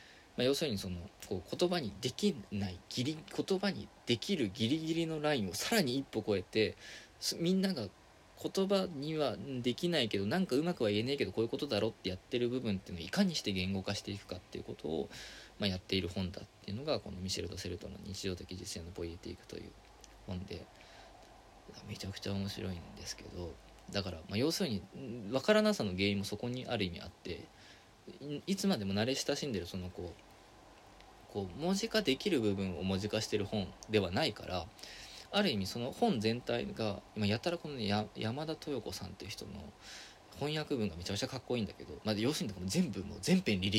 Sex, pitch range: male, 100-145 Hz